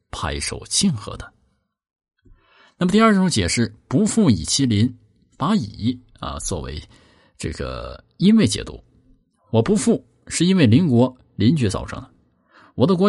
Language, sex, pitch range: Chinese, male, 105-170 Hz